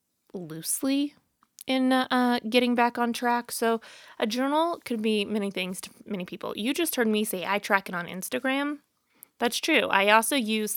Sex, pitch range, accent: female, 195-245 Hz, American